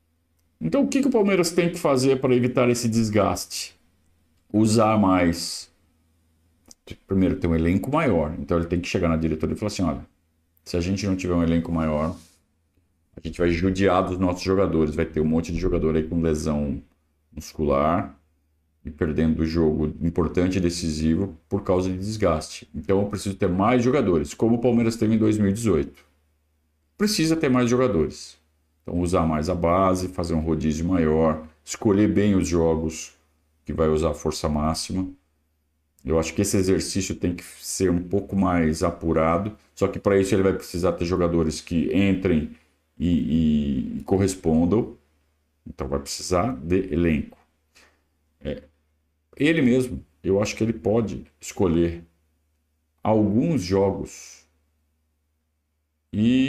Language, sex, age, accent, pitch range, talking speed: Portuguese, male, 50-69, Brazilian, 80-95 Hz, 150 wpm